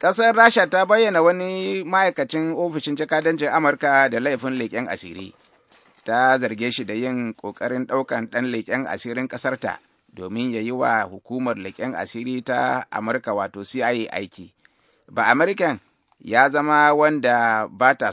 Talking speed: 130 wpm